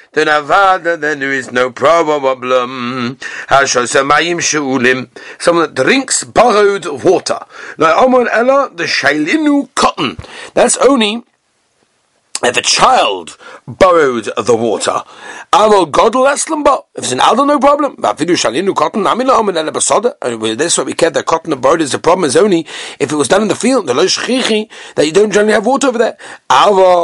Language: English